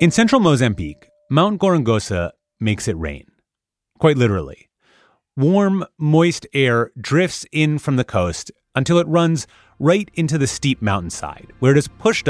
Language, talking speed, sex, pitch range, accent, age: English, 145 wpm, male, 100-160 Hz, American, 30-49